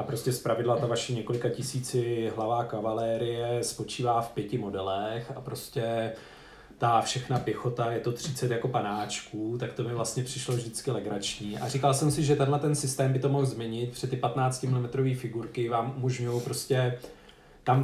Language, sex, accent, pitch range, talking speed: Czech, male, native, 120-140 Hz, 170 wpm